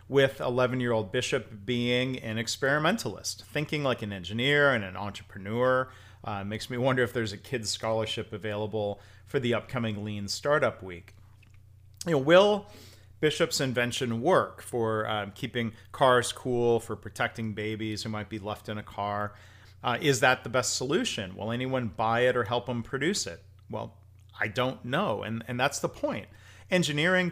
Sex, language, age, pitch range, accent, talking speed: male, English, 40-59, 105-130 Hz, American, 170 wpm